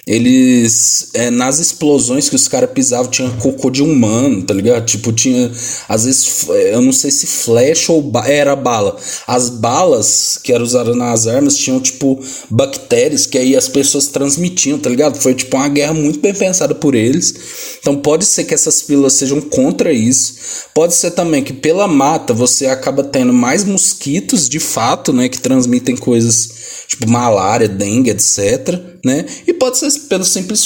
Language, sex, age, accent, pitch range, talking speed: Portuguese, male, 20-39, Brazilian, 120-160 Hz, 170 wpm